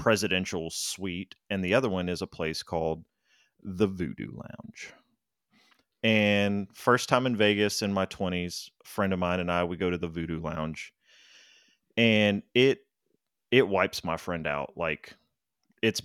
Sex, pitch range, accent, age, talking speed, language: male, 85-105 Hz, American, 30-49, 155 wpm, English